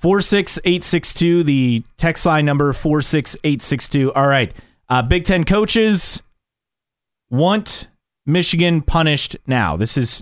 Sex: male